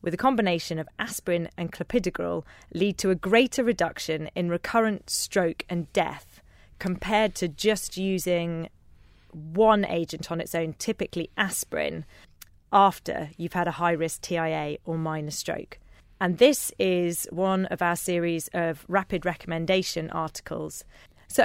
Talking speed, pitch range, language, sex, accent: 135 wpm, 160-195 Hz, English, female, British